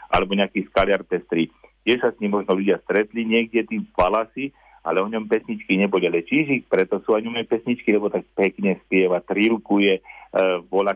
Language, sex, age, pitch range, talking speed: Slovak, male, 50-69, 95-115 Hz, 170 wpm